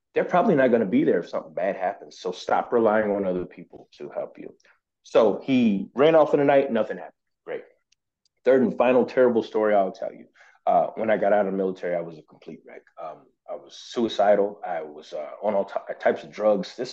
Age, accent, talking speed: 30-49, American, 225 wpm